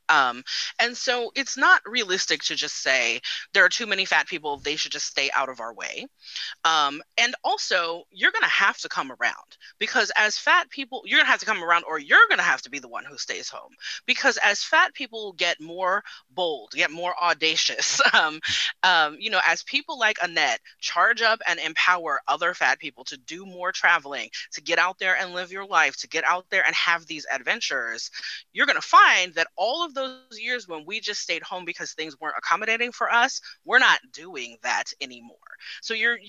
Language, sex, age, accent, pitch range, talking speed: English, female, 30-49, American, 165-260 Hz, 215 wpm